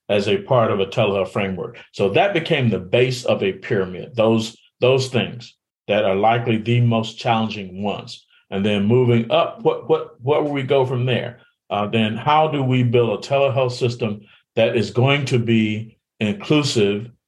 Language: English